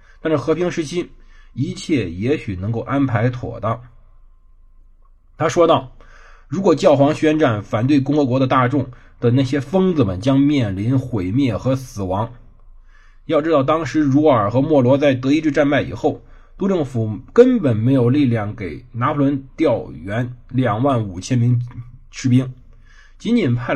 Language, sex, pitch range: Chinese, male, 110-150 Hz